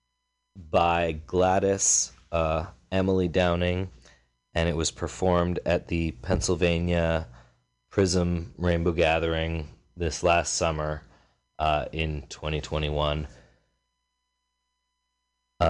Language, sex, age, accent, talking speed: English, male, 30-49, American, 80 wpm